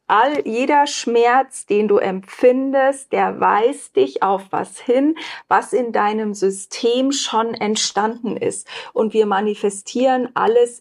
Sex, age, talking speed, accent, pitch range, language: female, 40-59, 120 wpm, German, 215-290 Hz, German